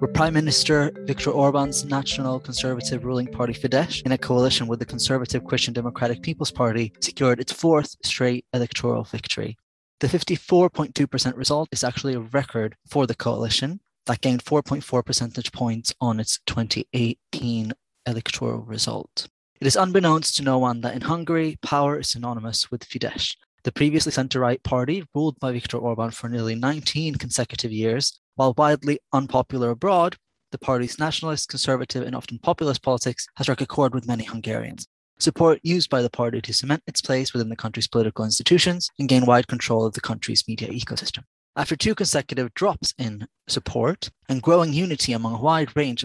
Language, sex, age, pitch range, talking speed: English, male, 20-39, 120-145 Hz, 165 wpm